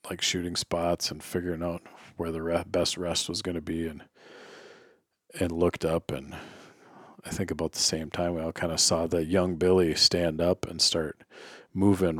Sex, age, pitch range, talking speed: male, 40-59, 80-90 Hz, 185 wpm